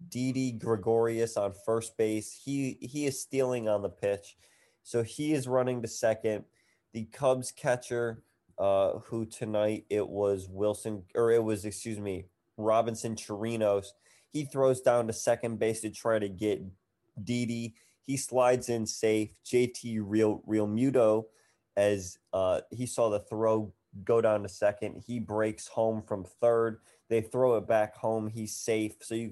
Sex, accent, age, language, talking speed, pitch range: male, American, 20-39, English, 160 wpm, 105-120 Hz